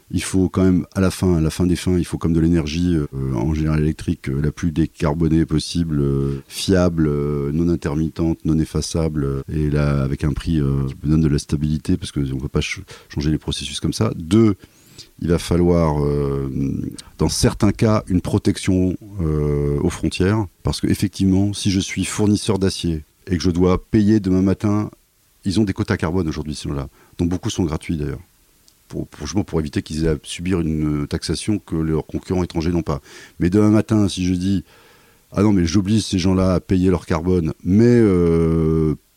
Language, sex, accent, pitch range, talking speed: French, male, French, 75-95 Hz, 200 wpm